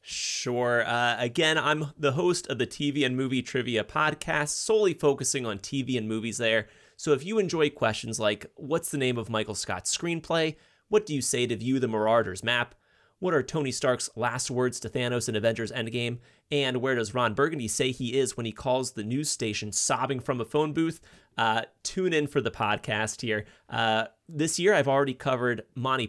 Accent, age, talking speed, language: American, 30-49, 200 wpm, English